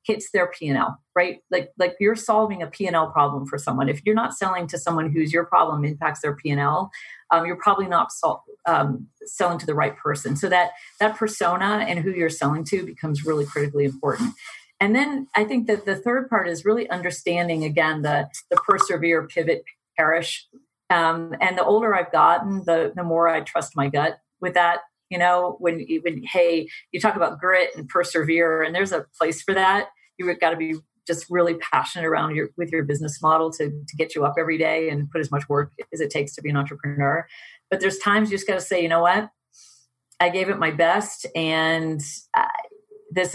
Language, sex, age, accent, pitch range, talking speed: English, female, 40-59, American, 160-190 Hz, 205 wpm